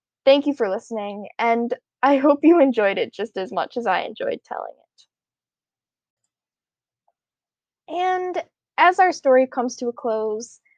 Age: 10-29